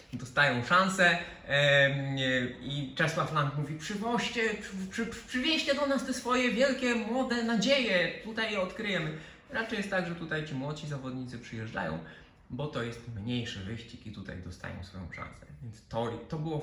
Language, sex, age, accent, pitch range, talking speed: Polish, male, 20-39, native, 115-175 Hz, 155 wpm